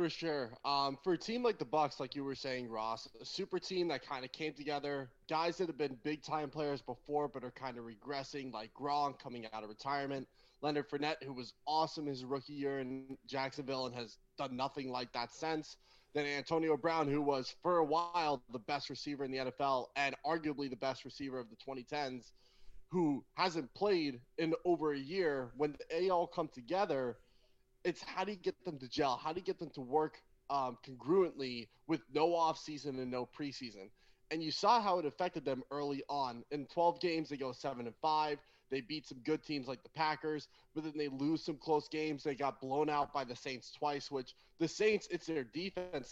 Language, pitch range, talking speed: English, 135-160 Hz, 210 wpm